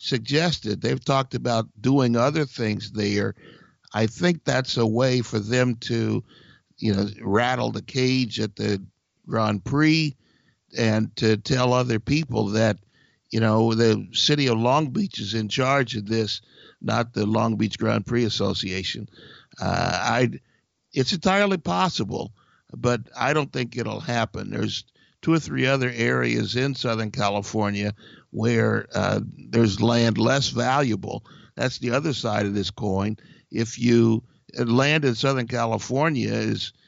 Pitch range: 110-130 Hz